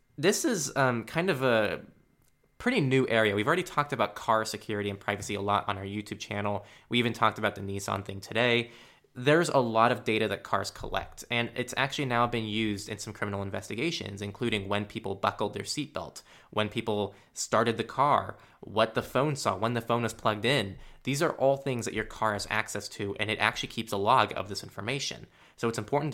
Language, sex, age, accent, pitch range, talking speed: English, male, 20-39, American, 105-130 Hz, 210 wpm